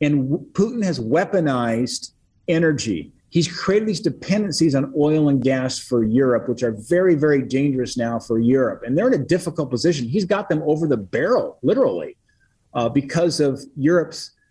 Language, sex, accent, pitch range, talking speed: English, male, American, 130-170 Hz, 165 wpm